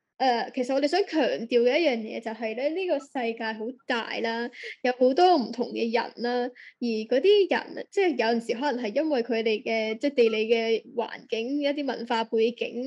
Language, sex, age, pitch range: Chinese, female, 10-29, 230-280 Hz